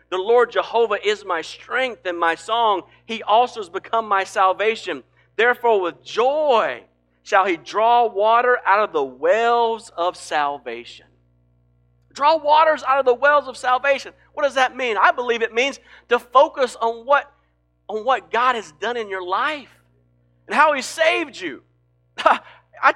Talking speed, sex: 160 wpm, male